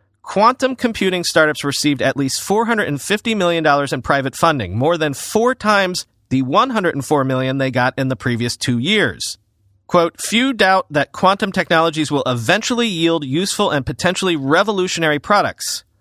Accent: American